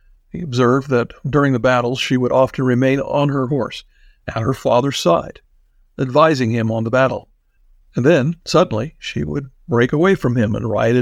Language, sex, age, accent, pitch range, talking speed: English, male, 50-69, American, 115-150 Hz, 180 wpm